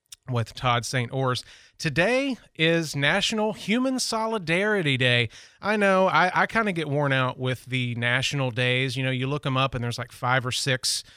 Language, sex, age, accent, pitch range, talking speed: English, male, 30-49, American, 125-155 Hz, 185 wpm